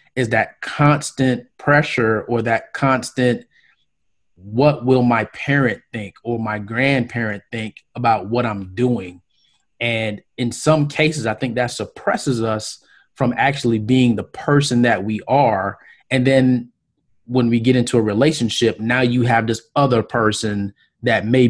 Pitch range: 110-125 Hz